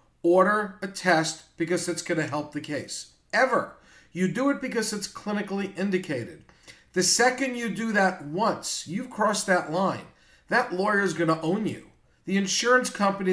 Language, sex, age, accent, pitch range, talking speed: English, male, 50-69, American, 160-190 Hz, 170 wpm